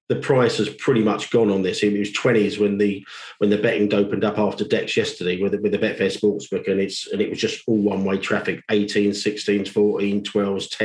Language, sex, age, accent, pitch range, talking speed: English, male, 40-59, British, 105-115 Hz, 220 wpm